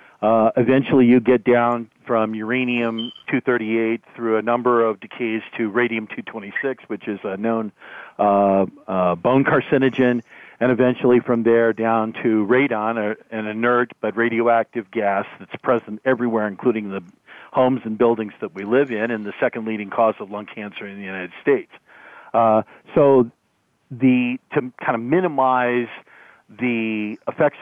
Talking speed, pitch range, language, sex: 145 wpm, 110-125 Hz, English, male